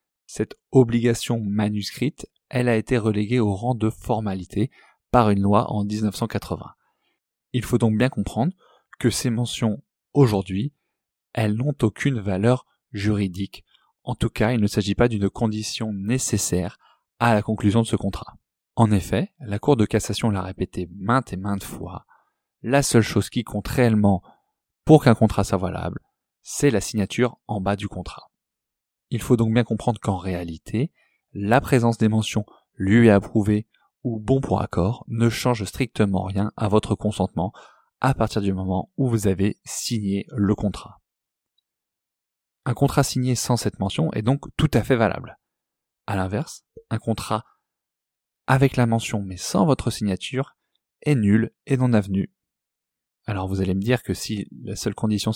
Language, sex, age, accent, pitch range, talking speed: French, male, 20-39, French, 100-125 Hz, 160 wpm